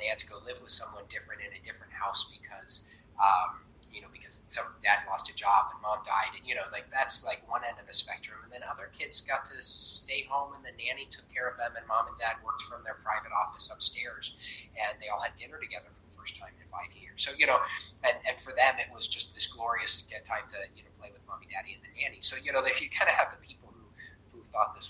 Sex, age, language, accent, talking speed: male, 30-49, English, American, 270 wpm